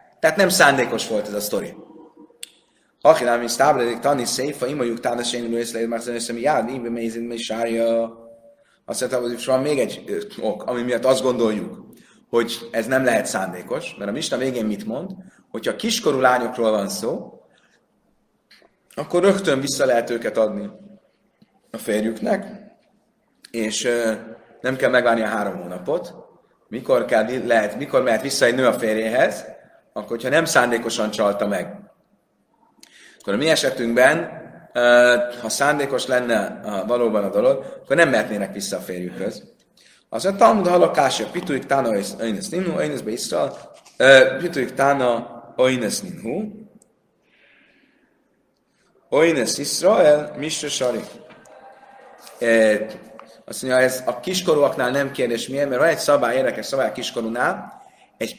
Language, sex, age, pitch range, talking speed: Hungarian, male, 30-49, 115-145 Hz, 130 wpm